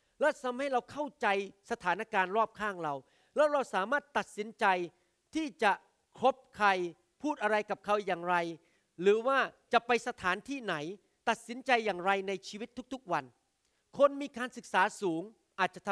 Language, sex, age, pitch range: Thai, male, 40-59, 175-230 Hz